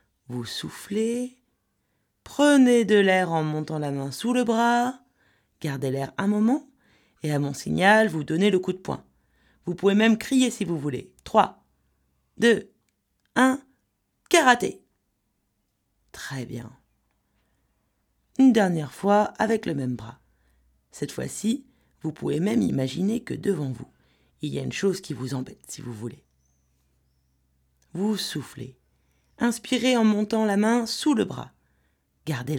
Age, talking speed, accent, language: 40-59, 140 wpm, French, French